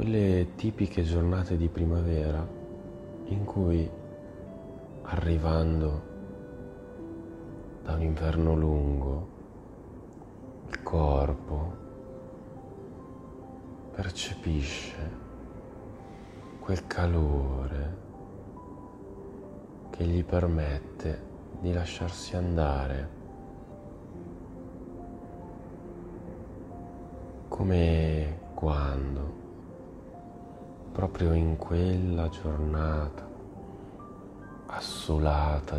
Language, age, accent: Italian, 30-49, native